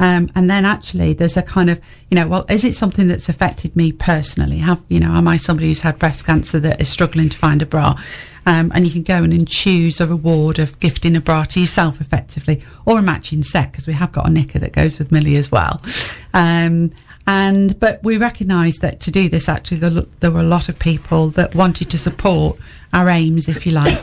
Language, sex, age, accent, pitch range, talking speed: English, female, 40-59, British, 160-185 Hz, 235 wpm